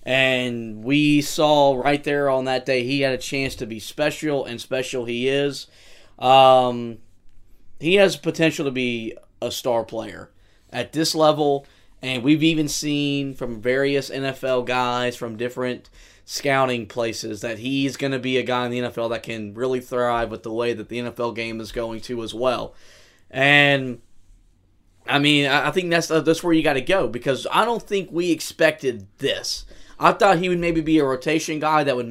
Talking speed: 190 wpm